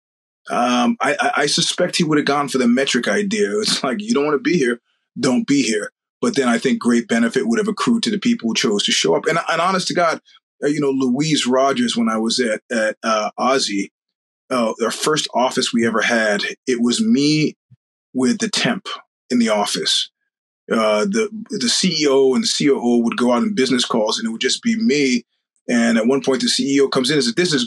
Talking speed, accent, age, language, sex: 225 wpm, American, 30-49, English, male